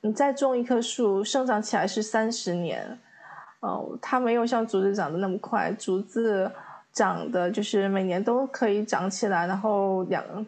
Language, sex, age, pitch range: Chinese, female, 20-39, 205-250 Hz